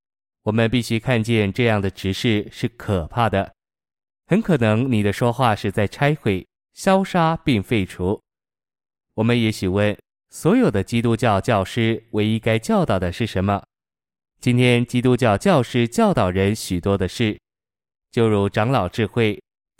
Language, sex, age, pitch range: Chinese, male, 20-39, 100-120 Hz